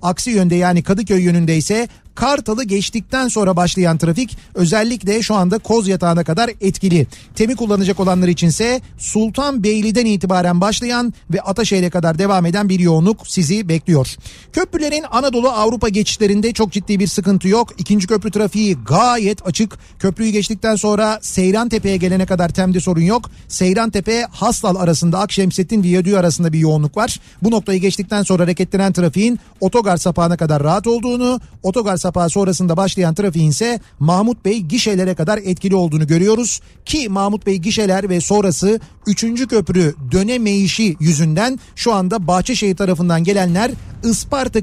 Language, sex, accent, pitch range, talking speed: Turkish, male, native, 180-220 Hz, 140 wpm